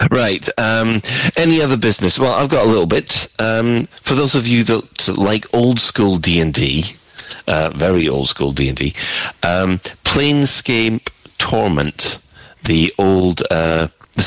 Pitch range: 80-110 Hz